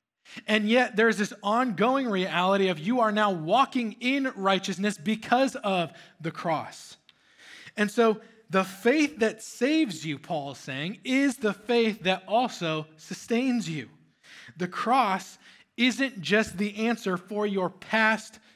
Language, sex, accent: English, male, American